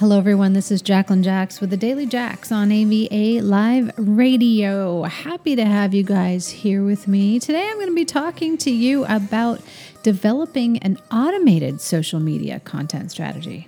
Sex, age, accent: female, 30-49, American